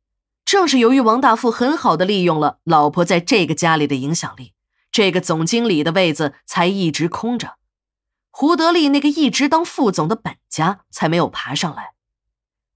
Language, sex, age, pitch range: Chinese, female, 20-39, 155-225 Hz